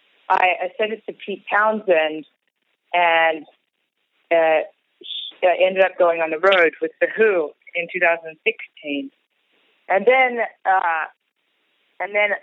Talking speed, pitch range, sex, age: 120 wpm, 165-195 Hz, female, 30-49